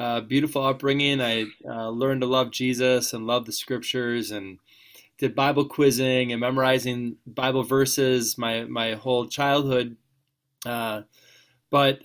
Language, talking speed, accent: English, 135 wpm, American